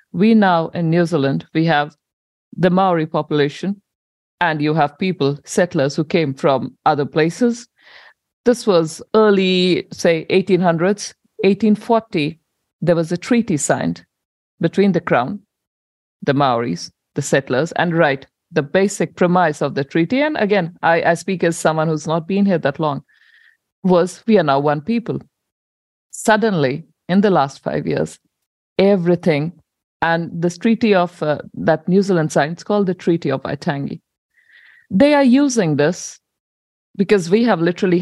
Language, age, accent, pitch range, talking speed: English, 50-69, Indian, 150-205 Hz, 150 wpm